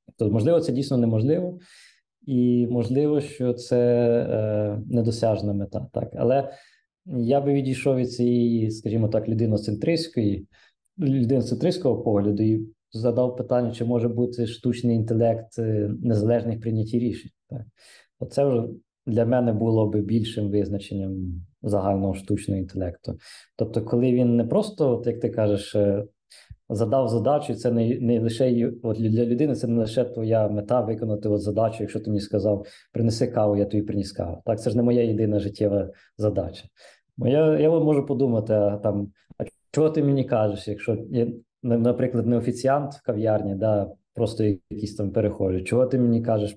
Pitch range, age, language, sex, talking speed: 105-125 Hz, 20-39, Ukrainian, male, 150 wpm